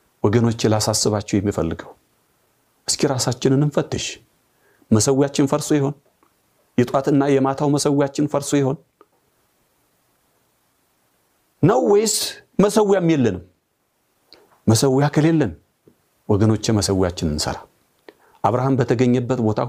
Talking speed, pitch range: 55 wpm, 110-155 Hz